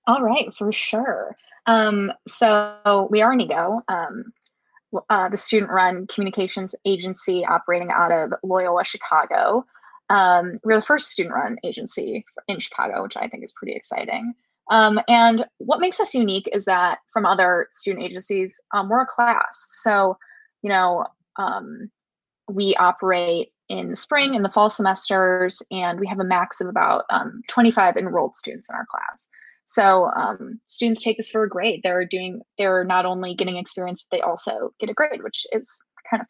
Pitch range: 190-235 Hz